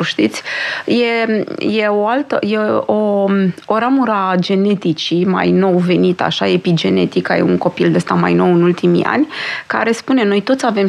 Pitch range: 190-240 Hz